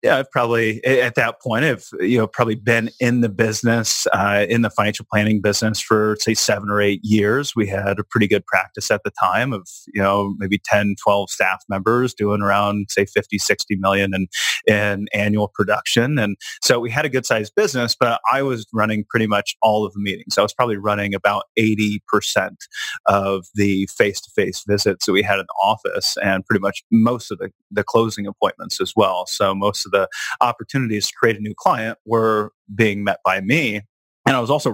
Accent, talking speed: American, 200 wpm